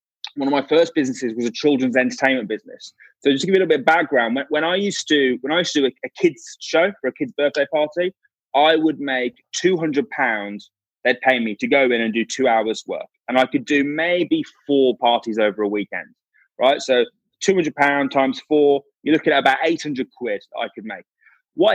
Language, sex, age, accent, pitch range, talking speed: English, male, 20-39, British, 135-200 Hz, 210 wpm